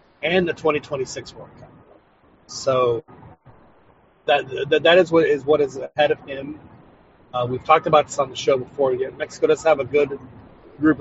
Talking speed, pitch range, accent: 180 wpm, 125-145 Hz, American